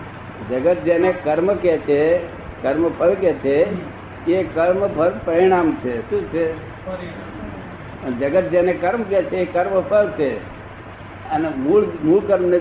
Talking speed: 120 wpm